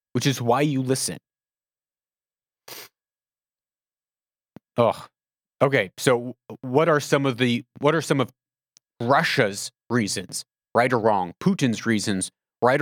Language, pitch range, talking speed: English, 115-155 Hz, 115 wpm